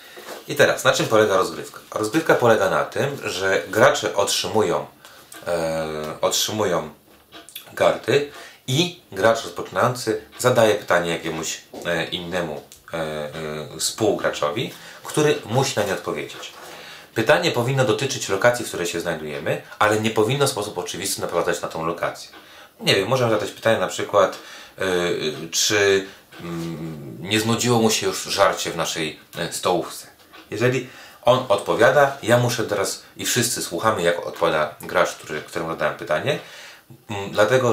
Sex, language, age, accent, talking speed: male, Polish, 30-49, native, 135 wpm